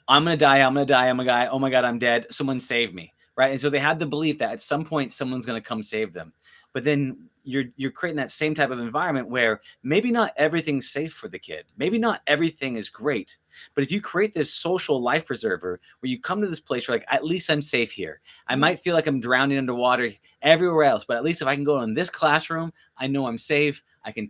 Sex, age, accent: male, 30-49, American